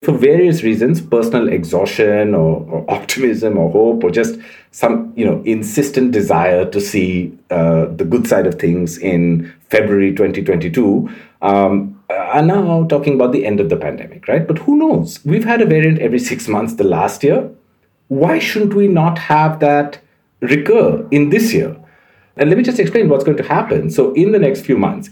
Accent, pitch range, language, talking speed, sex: Indian, 100-155 Hz, English, 185 wpm, male